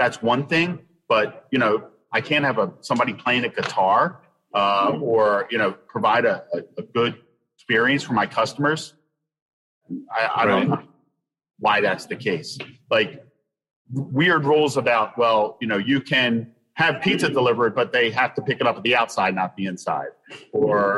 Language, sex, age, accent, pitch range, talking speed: English, male, 40-59, American, 115-150 Hz, 170 wpm